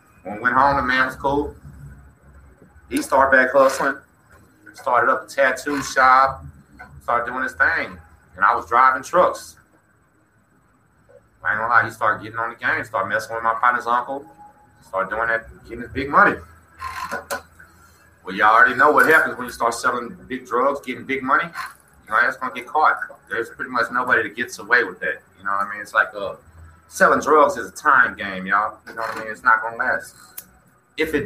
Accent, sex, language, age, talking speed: American, male, English, 30-49, 205 wpm